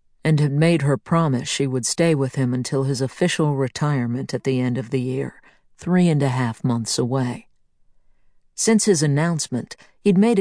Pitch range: 130-155 Hz